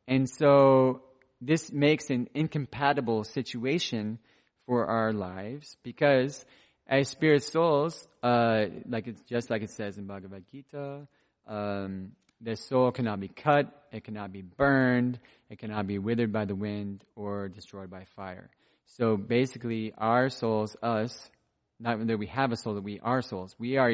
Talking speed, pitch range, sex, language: 155 wpm, 110-135 Hz, male, English